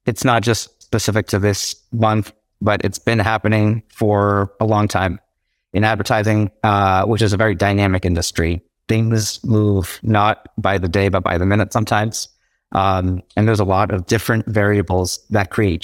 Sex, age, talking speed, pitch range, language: male, 30-49, 170 wpm, 95-110 Hz, English